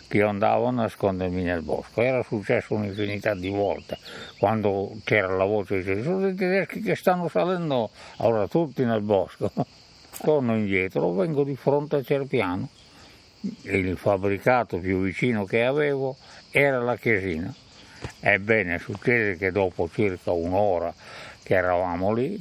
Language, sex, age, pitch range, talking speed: Italian, male, 60-79, 95-130 Hz, 135 wpm